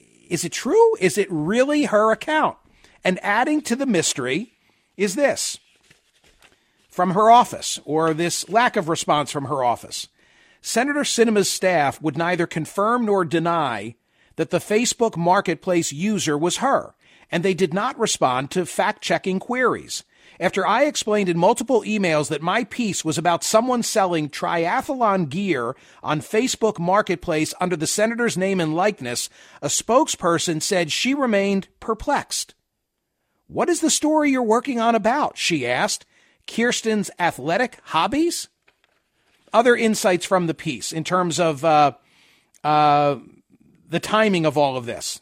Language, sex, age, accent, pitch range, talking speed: English, male, 50-69, American, 165-225 Hz, 145 wpm